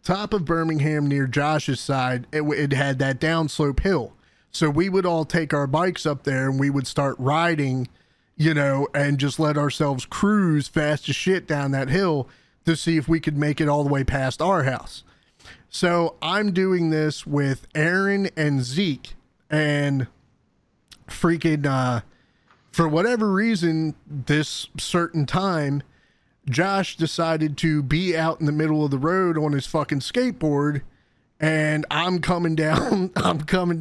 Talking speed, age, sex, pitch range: 160 wpm, 30-49, male, 150-185 Hz